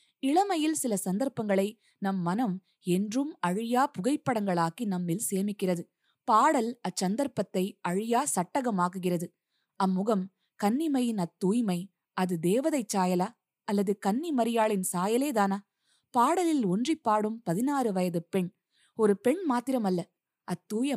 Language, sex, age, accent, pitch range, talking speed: Tamil, female, 20-39, native, 185-245 Hz, 95 wpm